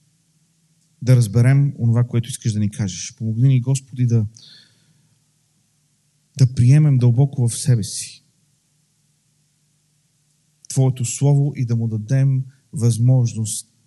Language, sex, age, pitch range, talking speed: Bulgarian, male, 40-59, 120-150 Hz, 110 wpm